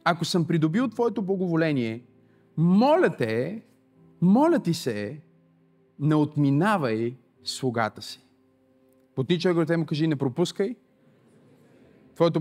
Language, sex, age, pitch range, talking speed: Bulgarian, male, 30-49, 135-215 Hz, 105 wpm